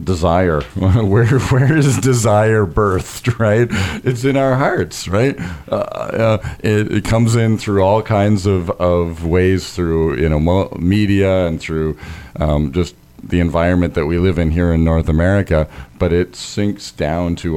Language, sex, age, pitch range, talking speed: English, male, 40-59, 80-100 Hz, 160 wpm